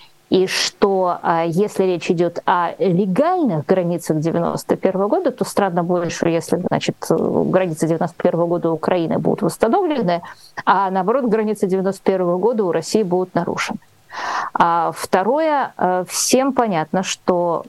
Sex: female